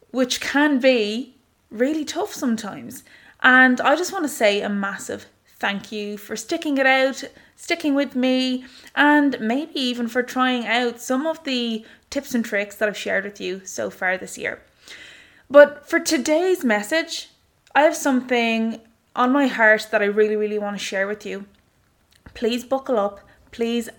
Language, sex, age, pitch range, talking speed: English, female, 20-39, 220-270 Hz, 170 wpm